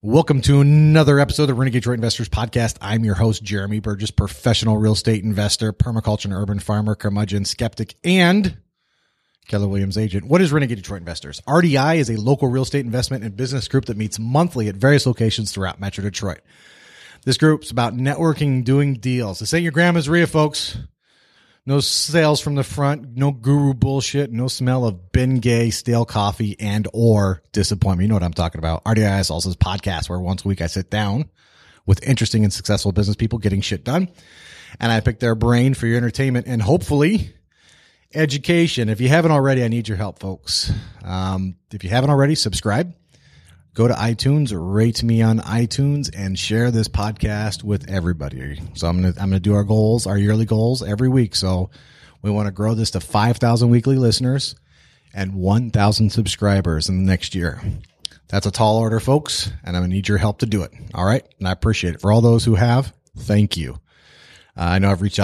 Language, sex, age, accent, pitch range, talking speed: English, male, 30-49, American, 100-130 Hz, 195 wpm